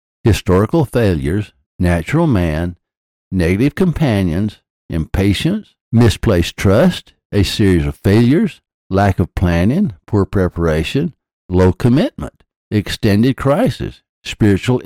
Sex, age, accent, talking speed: male, 60-79, American, 95 wpm